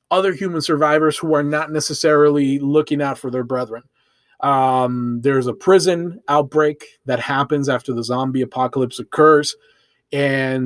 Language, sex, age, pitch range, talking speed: English, male, 20-39, 130-155 Hz, 140 wpm